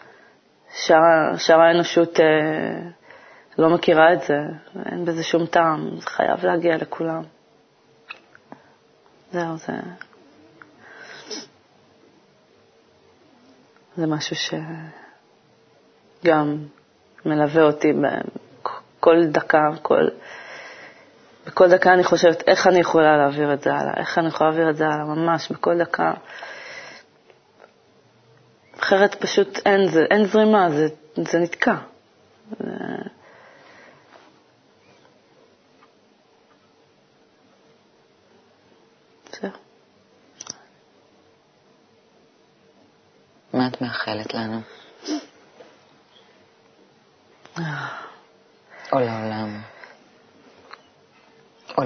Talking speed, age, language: 65 wpm, 20-39, Hebrew